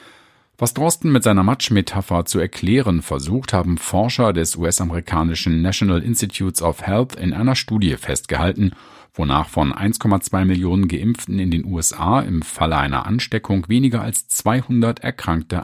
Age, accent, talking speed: 50-69, German, 140 wpm